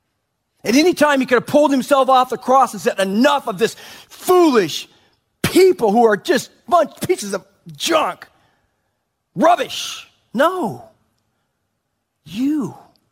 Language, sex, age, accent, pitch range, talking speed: English, male, 40-59, American, 140-230 Hz, 130 wpm